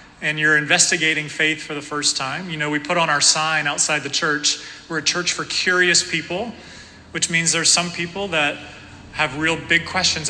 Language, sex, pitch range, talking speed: English, male, 145-165 Hz, 200 wpm